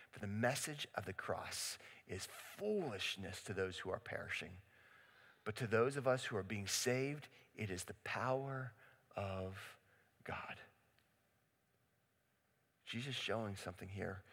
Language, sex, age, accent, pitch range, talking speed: English, male, 40-59, American, 115-160 Hz, 135 wpm